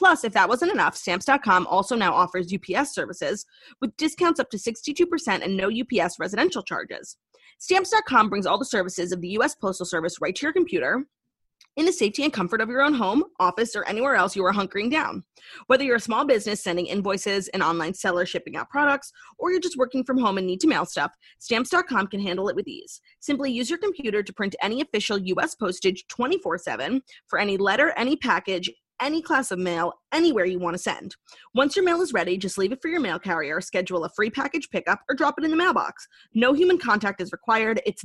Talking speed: 215 wpm